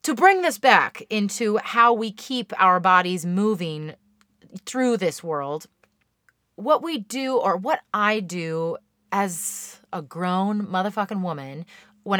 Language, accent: English, American